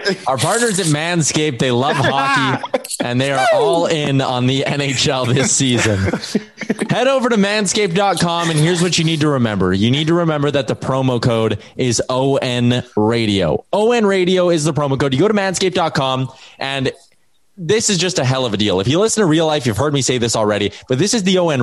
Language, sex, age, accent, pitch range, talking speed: English, male, 20-39, American, 130-190 Hz, 210 wpm